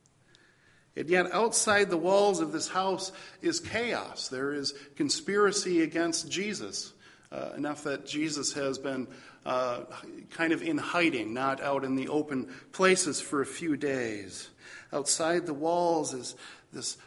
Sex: male